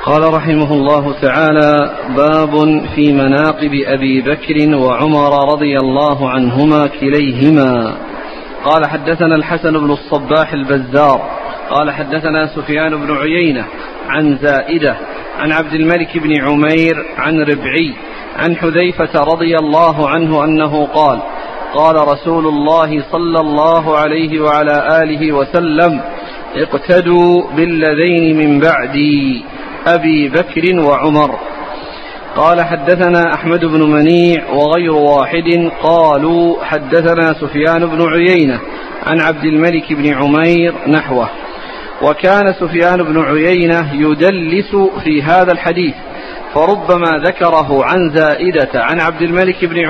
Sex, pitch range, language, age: male, 150-170 Hz, Arabic, 40-59